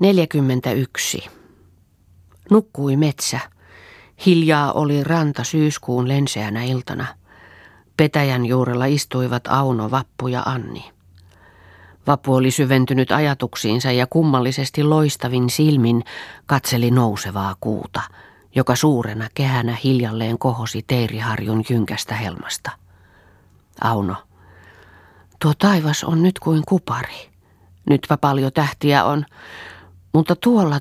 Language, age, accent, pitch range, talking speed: Finnish, 40-59, native, 95-150 Hz, 95 wpm